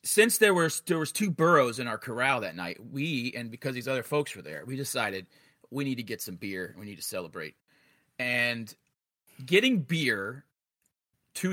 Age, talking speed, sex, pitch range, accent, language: 30-49, 180 wpm, male, 120-155 Hz, American, English